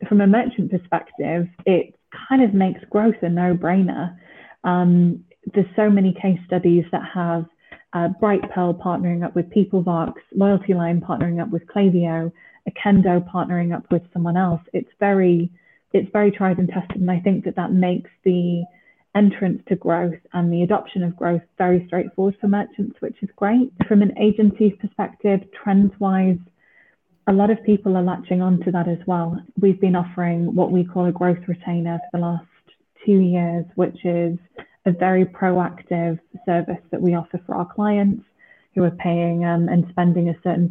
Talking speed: 170 wpm